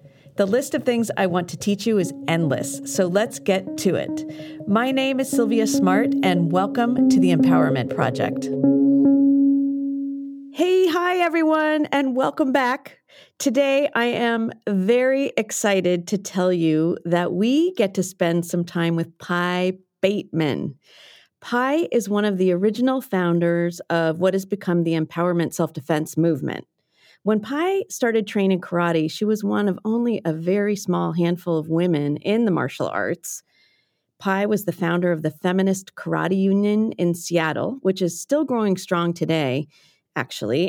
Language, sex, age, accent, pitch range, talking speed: English, female, 40-59, American, 165-230 Hz, 155 wpm